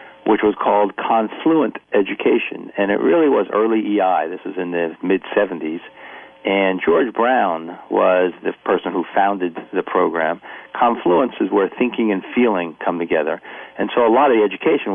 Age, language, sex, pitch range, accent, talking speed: 50-69, English, male, 90-105 Hz, American, 165 wpm